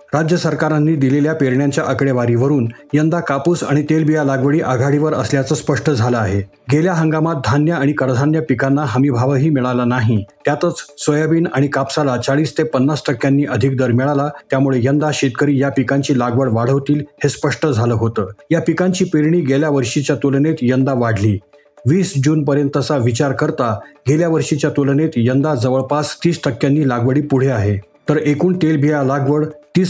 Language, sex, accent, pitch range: Marathi, male, native, 130-155 Hz